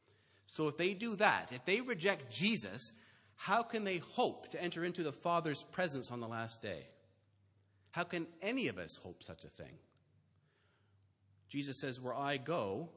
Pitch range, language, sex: 100-130 Hz, English, male